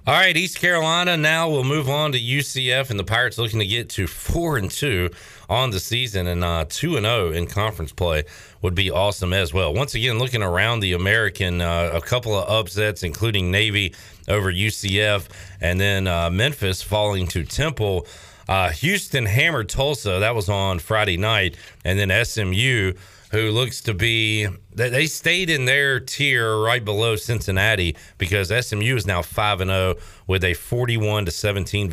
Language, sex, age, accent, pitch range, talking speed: English, male, 40-59, American, 95-125 Hz, 175 wpm